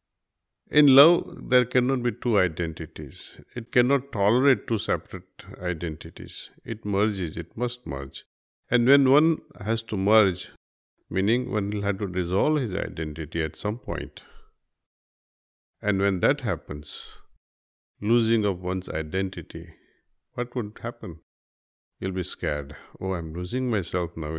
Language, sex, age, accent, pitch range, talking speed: Hindi, male, 50-69, native, 85-115 Hz, 135 wpm